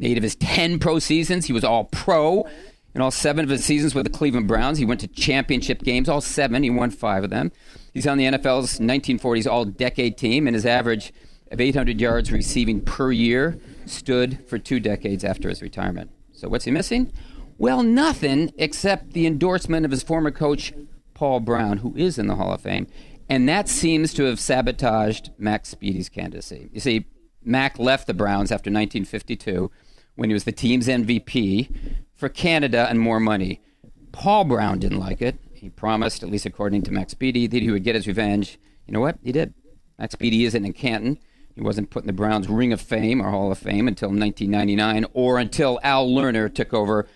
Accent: American